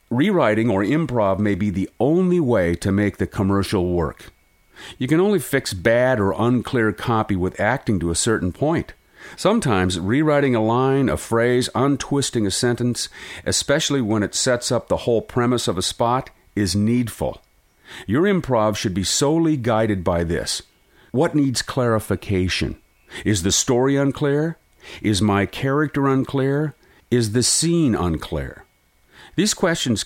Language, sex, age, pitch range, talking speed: English, male, 50-69, 100-135 Hz, 150 wpm